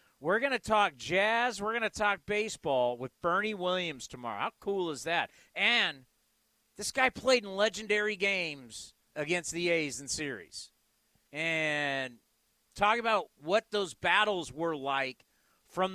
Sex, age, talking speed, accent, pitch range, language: male, 40-59, 145 wpm, American, 155-205 Hz, English